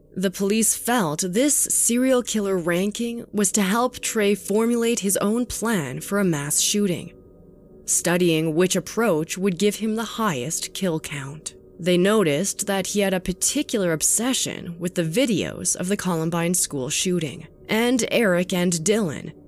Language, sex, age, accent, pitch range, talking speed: English, female, 20-39, American, 170-210 Hz, 150 wpm